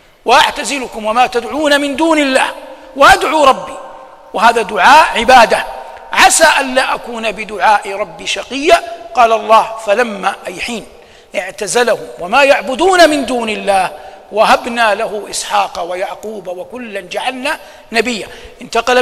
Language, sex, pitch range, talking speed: Arabic, male, 235-295 Hz, 115 wpm